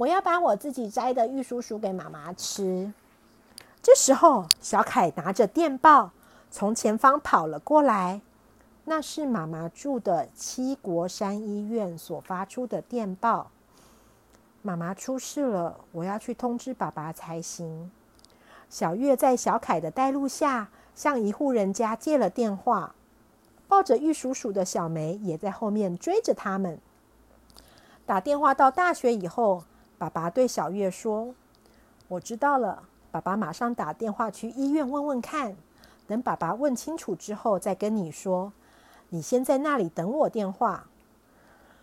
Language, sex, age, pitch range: Chinese, female, 50-69, 185-265 Hz